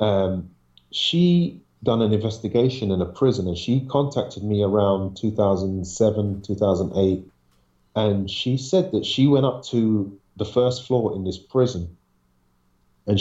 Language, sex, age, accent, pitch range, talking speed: English, male, 40-59, British, 95-125 Hz, 135 wpm